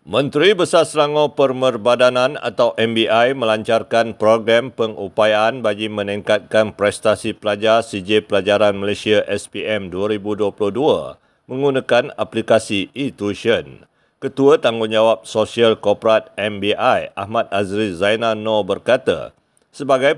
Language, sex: Malay, male